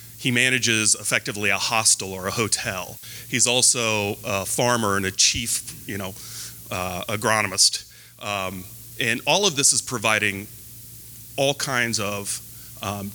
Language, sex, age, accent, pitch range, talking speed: English, male, 30-49, American, 105-120 Hz, 135 wpm